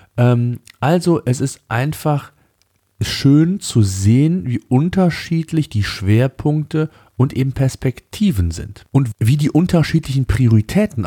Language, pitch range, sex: German, 100-140 Hz, male